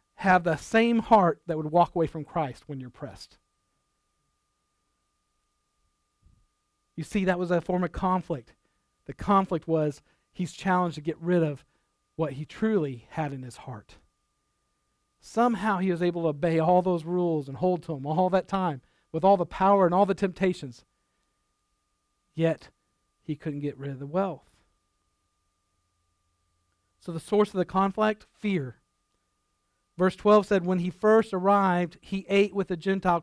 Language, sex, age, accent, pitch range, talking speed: English, male, 40-59, American, 160-210 Hz, 160 wpm